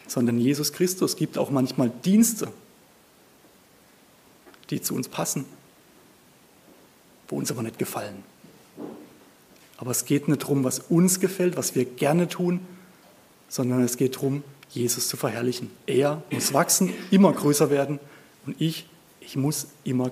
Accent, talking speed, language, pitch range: German, 135 wpm, German, 130-175 Hz